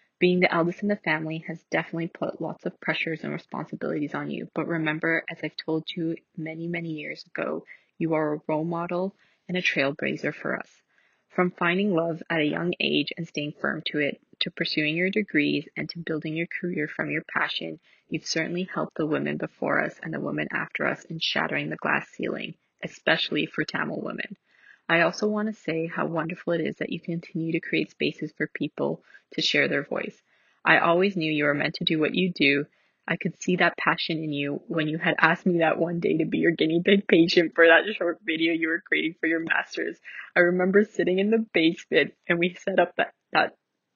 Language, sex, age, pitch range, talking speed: English, female, 20-39, 160-180 Hz, 215 wpm